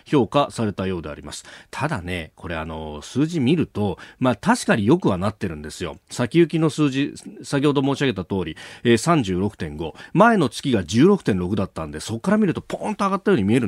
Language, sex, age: Japanese, male, 40-59